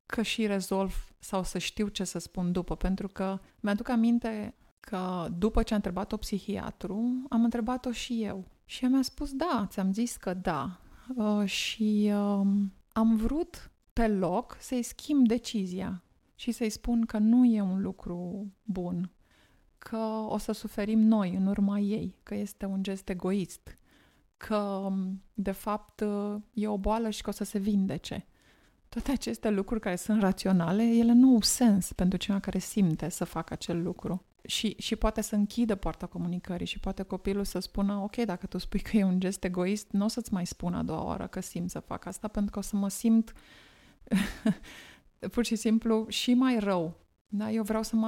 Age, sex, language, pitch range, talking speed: 20-39, female, Romanian, 190-225 Hz, 180 wpm